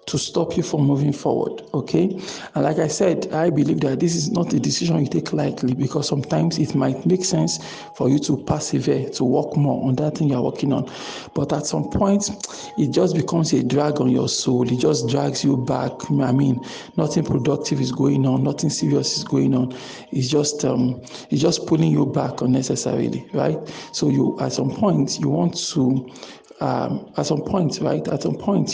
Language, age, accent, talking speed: English, 50-69, Nigerian, 200 wpm